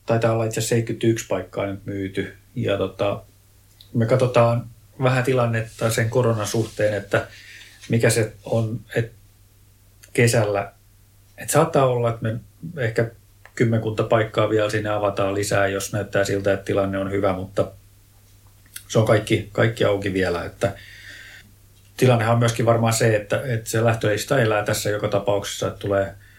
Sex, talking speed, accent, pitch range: male, 150 wpm, native, 100-115 Hz